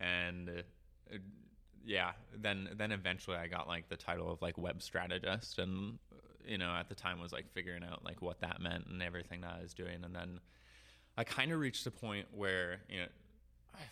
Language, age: English, 20-39